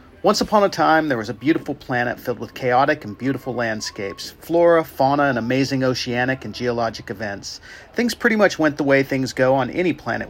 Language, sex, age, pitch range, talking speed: English, male, 40-59, 120-160 Hz, 200 wpm